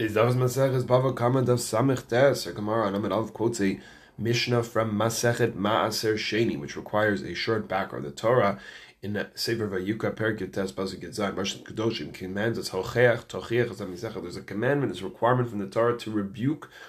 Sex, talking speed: male, 140 wpm